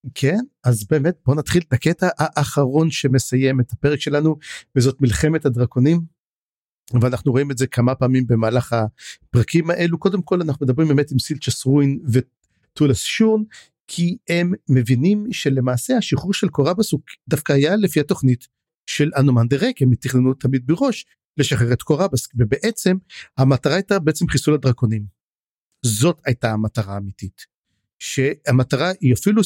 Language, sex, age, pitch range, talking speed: Hebrew, male, 50-69, 125-155 Hz, 140 wpm